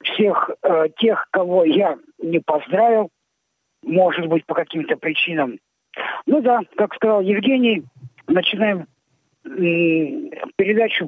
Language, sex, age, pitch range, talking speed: Russian, male, 50-69, 155-215 Hz, 110 wpm